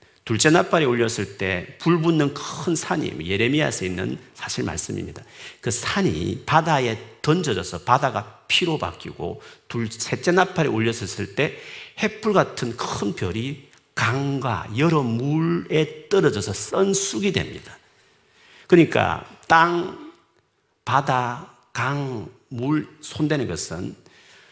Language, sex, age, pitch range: Korean, male, 50-69, 110-160 Hz